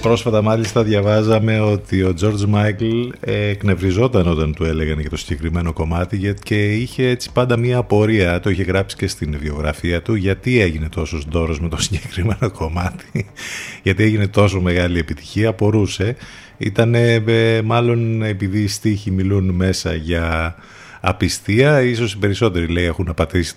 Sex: male